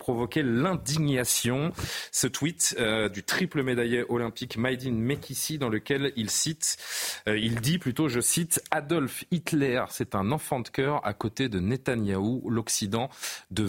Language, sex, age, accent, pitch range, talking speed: French, male, 30-49, French, 105-125 Hz, 150 wpm